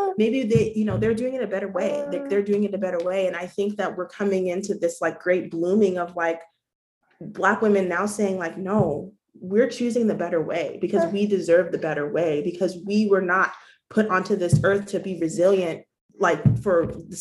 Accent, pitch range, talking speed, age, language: American, 170-205 Hz, 210 wpm, 30-49, English